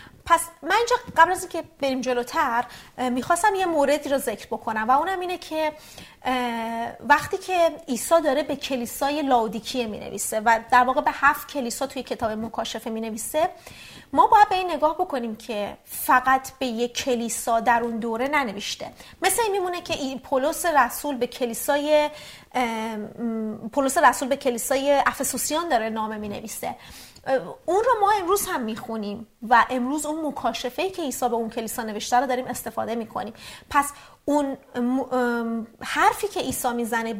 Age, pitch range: 30-49, 235-305 Hz